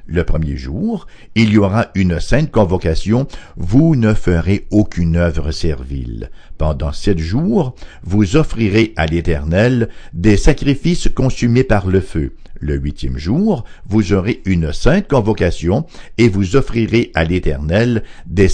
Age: 60-79